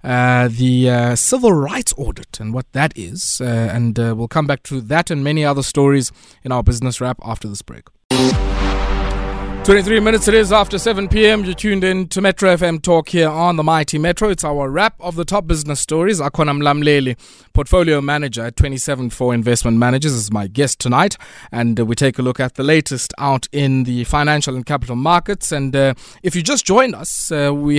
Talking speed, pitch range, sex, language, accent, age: 200 wpm, 120-165 Hz, male, English, South African, 20-39